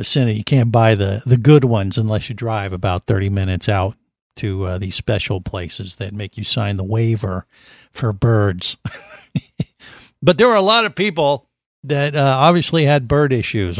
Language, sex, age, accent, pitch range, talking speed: English, male, 50-69, American, 110-145 Hz, 175 wpm